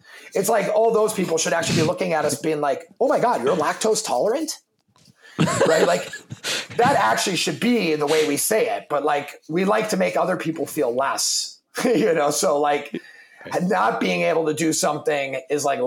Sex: male